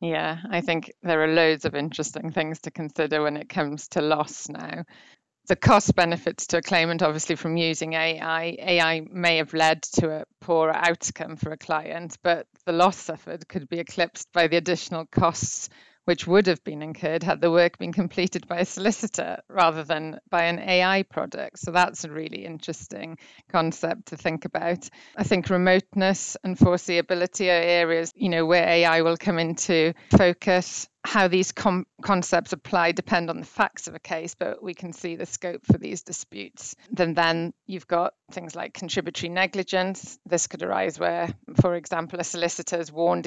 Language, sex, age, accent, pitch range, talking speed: English, female, 30-49, British, 165-180 Hz, 180 wpm